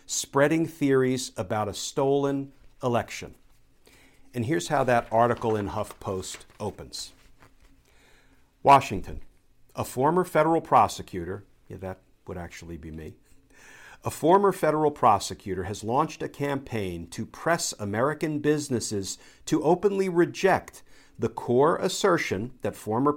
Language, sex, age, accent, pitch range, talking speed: English, male, 50-69, American, 110-150 Hz, 115 wpm